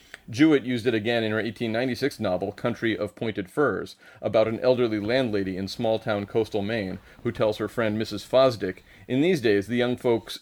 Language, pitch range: English, 105-125 Hz